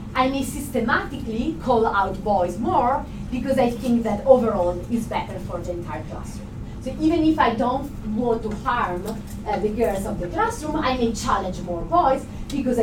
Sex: female